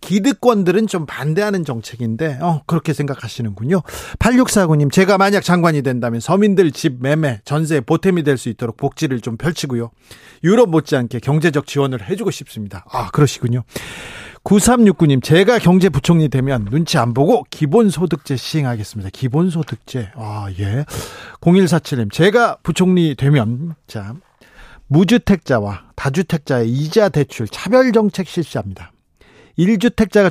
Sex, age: male, 40-59